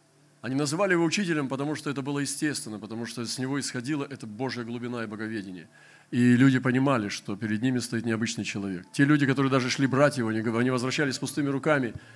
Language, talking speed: Russian, 190 wpm